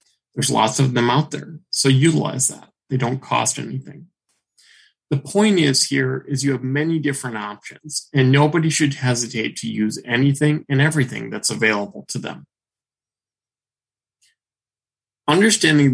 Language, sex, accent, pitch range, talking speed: English, male, American, 120-145 Hz, 140 wpm